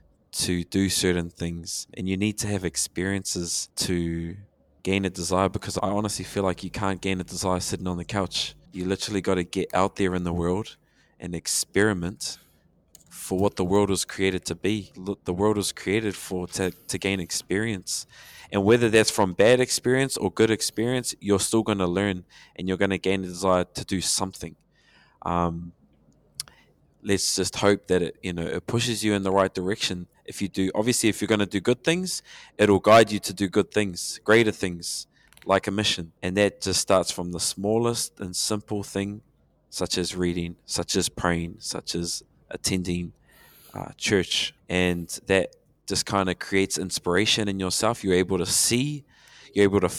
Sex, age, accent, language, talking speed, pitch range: male, 20-39, Australian, English, 185 wpm, 90-105 Hz